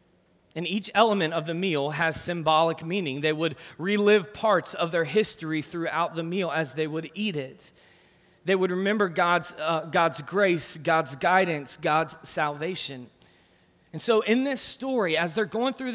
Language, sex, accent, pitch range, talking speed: English, male, American, 125-185 Hz, 165 wpm